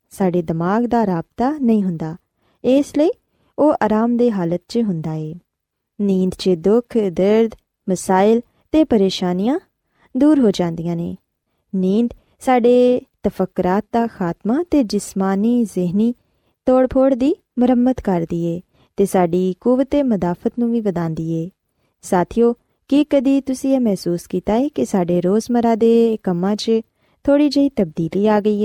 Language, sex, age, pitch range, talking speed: Punjabi, female, 20-39, 185-260 Hz, 140 wpm